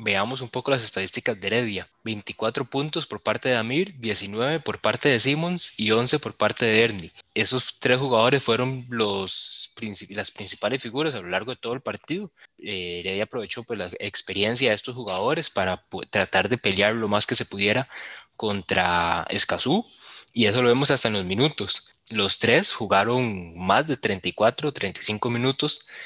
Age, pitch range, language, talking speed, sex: 20-39, 105-125 Hz, Spanish, 175 wpm, male